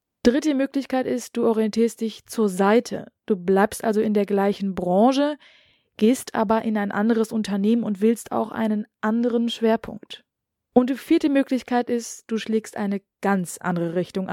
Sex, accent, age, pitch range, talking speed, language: female, German, 20-39, 195-235 Hz, 160 wpm, German